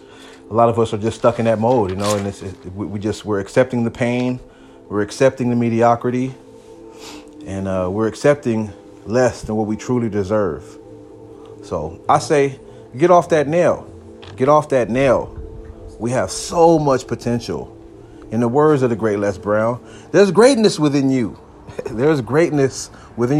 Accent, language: American, English